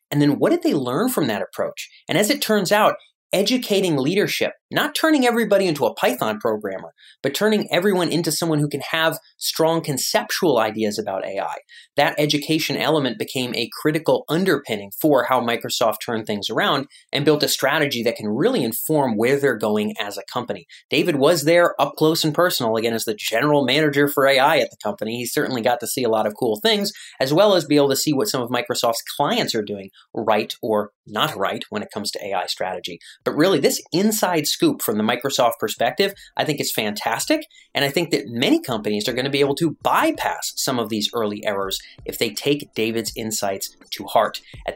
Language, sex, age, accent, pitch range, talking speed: English, male, 30-49, American, 115-175 Hz, 205 wpm